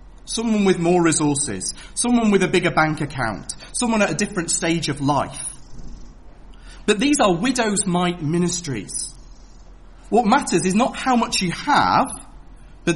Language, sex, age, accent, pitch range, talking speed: English, male, 30-49, British, 150-210 Hz, 150 wpm